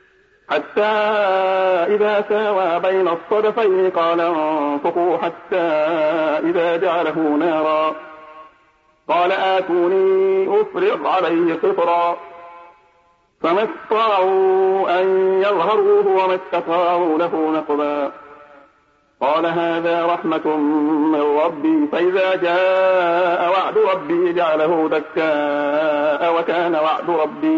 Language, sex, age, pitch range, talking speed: Arabic, male, 50-69, 155-190 Hz, 80 wpm